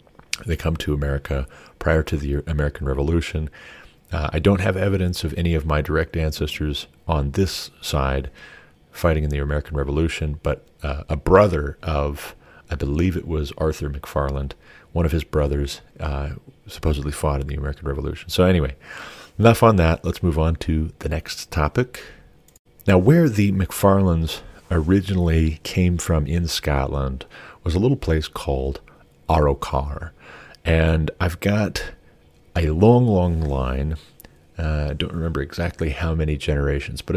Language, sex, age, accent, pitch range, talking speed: English, male, 40-59, American, 75-85 Hz, 150 wpm